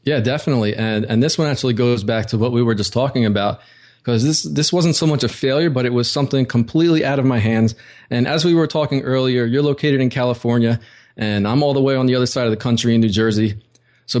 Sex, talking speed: male, 250 wpm